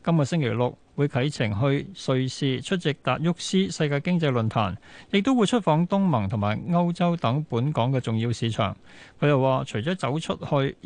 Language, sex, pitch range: Chinese, male, 120-165 Hz